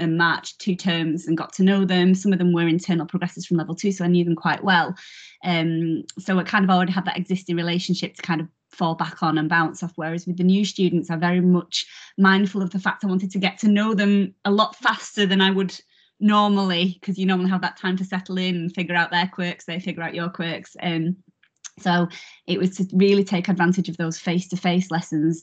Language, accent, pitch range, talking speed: English, British, 170-190 Hz, 240 wpm